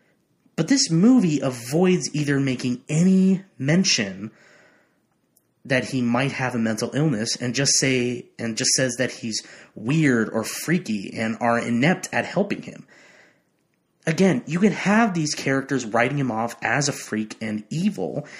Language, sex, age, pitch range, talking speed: English, male, 30-49, 125-180 Hz, 150 wpm